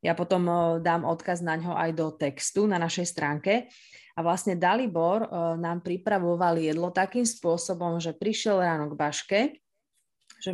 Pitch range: 175-205 Hz